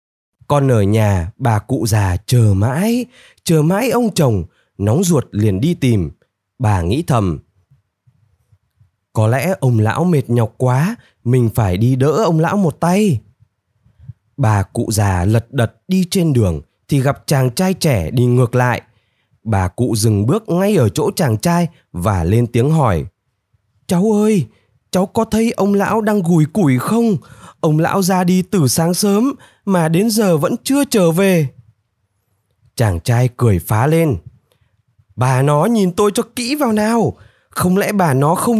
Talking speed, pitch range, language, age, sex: 165 wpm, 110-185 Hz, Vietnamese, 20-39, male